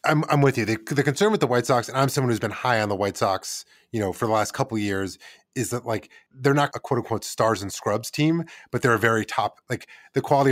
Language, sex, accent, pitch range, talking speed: English, male, American, 105-135 Hz, 280 wpm